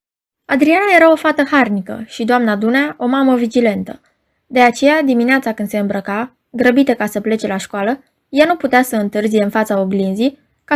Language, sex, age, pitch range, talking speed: Romanian, female, 20-39, 210-280 Hz, 180 wpm